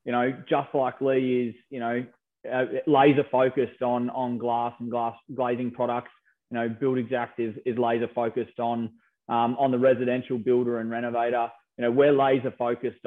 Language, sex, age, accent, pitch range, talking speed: English, male, 20-39, Australian, 120-135 Hz, 180 wpm